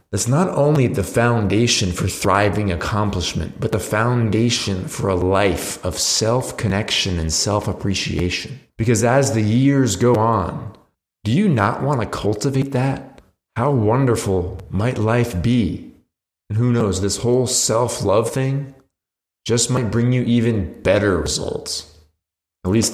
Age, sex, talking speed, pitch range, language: 30-49, male, 135 wpm, 95-115 Hz, English